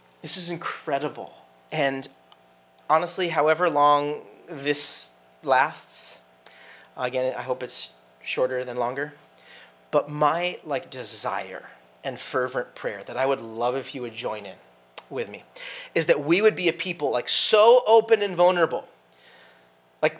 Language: English